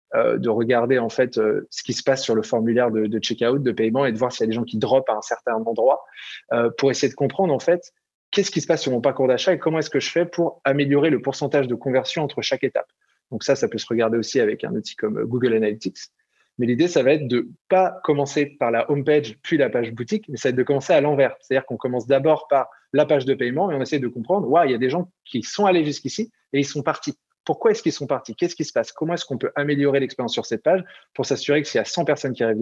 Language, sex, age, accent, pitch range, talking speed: French, male, 20-39, French, 125-160 Hz, 285 wpm